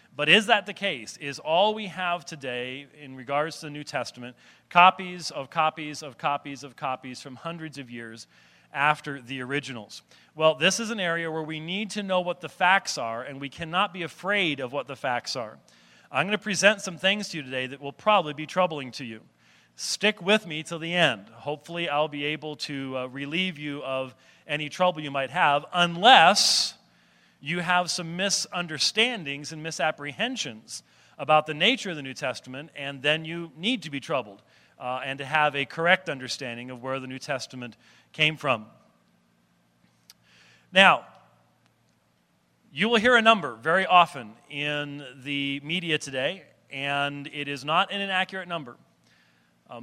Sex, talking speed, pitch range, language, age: male, 175 wpm, 135-175 Hz, English, 40-59